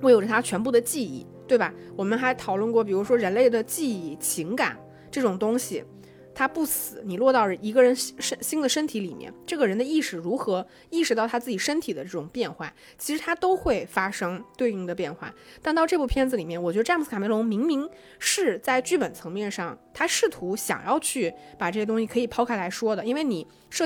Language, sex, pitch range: Chinese, female, 195-270 Hz